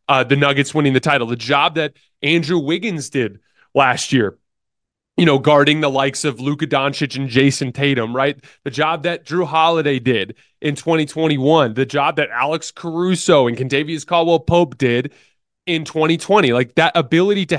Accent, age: American, 20-39